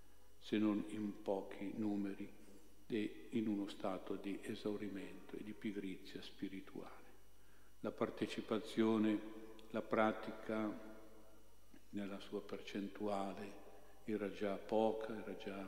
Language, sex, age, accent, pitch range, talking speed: Italian, male, 50-69, native, 100-110 Hz, 105 wpm